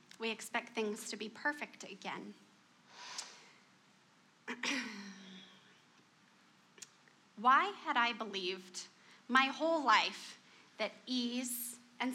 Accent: American